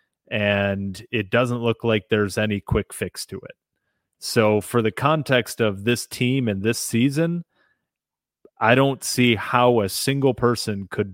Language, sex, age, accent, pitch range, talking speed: English, male, 30-49, American, 105-120 Hz, 155 wpm